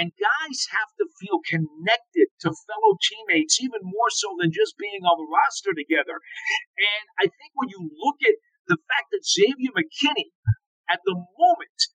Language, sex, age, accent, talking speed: English, male, 50-69, American, 170 wpm